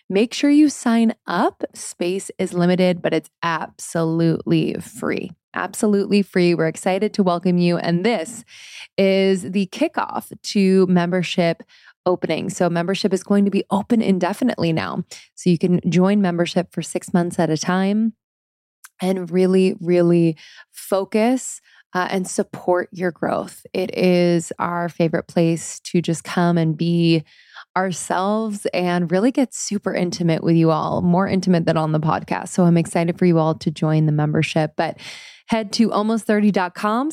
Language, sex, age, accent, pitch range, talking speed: English, female, 20-39, American, 170-205 Hz, 155 wpm